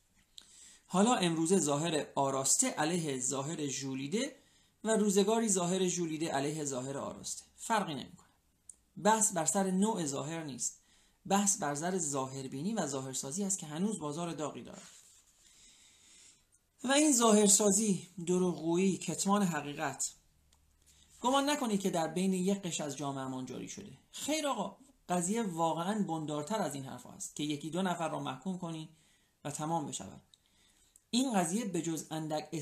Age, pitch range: 40-59, 150-200 Hz